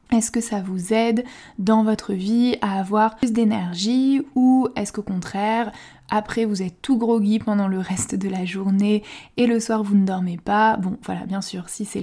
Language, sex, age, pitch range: French, female, 20-39, 205-240 Hz